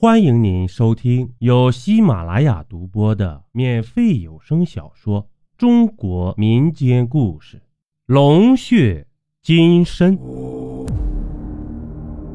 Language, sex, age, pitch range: Chinese, male, 30-49, 105-165 Hz